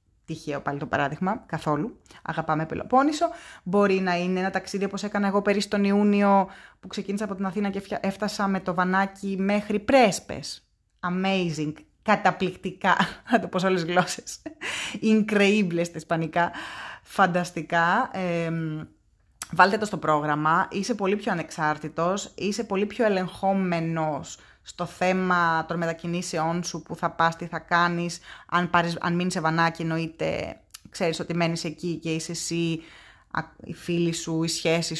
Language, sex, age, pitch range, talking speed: Greek, female, 20-39, 165-200 Hz, 140 wpm